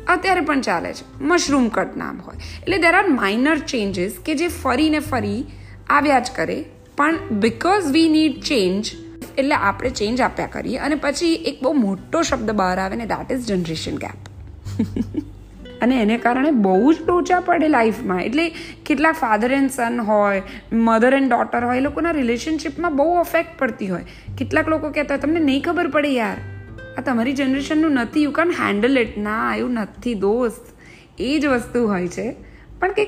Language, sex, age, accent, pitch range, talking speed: Gujarati, female, 20-39, native, 200-295 Hz, 145 wpm